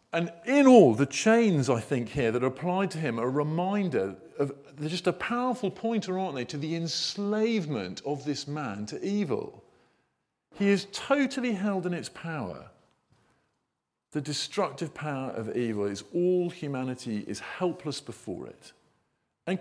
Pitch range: 120-185 Hz